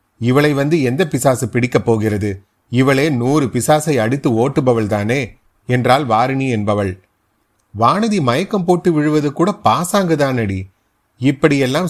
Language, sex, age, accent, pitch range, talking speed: Tamil, male, 30-49, native, 115-150 Hz, 115 wpm